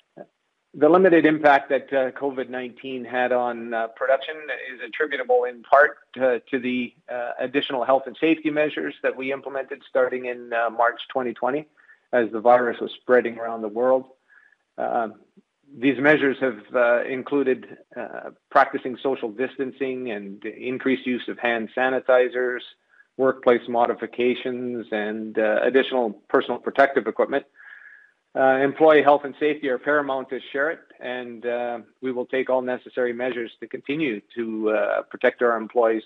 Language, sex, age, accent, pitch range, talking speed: English, male, 40-59, American, 120-135 Hz, 145 wpm